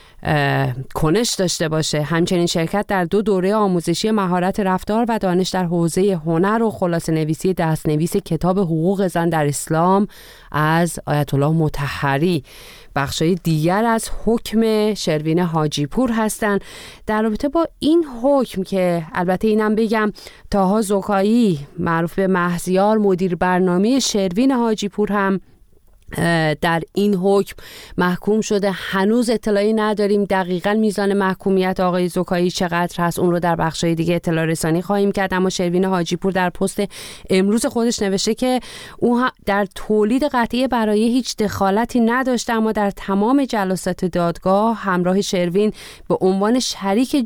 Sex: female